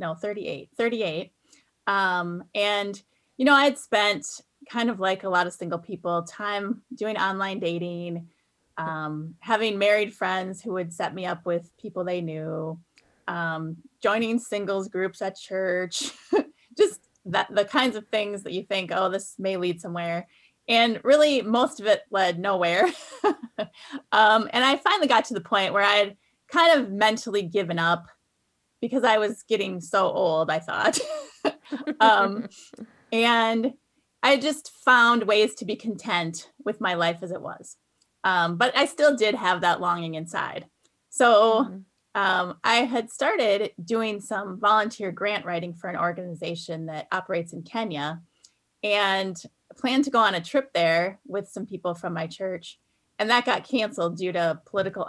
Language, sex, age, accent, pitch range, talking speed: English, female, 30-49, American, 175-230 Hz, 160 wpm